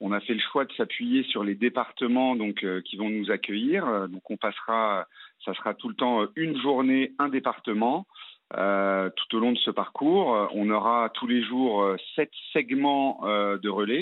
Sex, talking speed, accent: male, 195 wpm, French